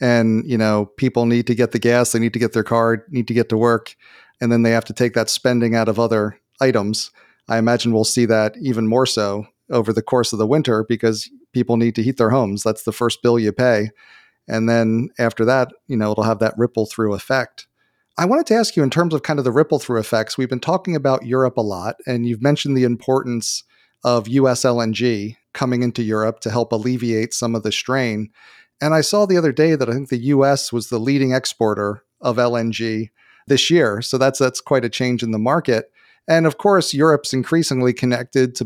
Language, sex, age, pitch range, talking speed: English, male, 40-59, 115-130 Hz, 220 wpm